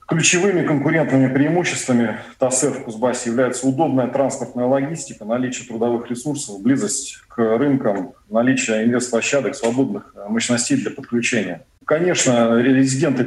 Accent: native